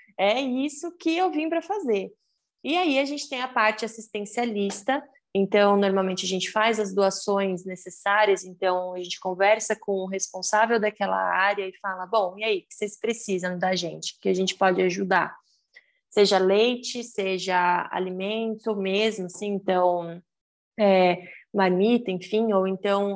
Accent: Brazilian